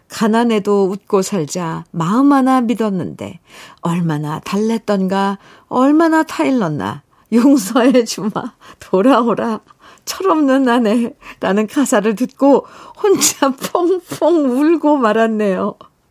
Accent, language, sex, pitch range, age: native, Korean, female, 175-250 Hz, 50-69